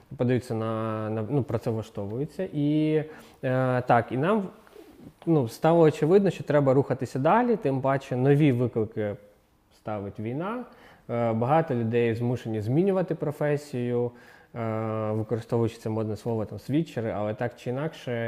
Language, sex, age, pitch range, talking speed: Ukrainian, male, 20-39, 110-135 Hz, 130 wpm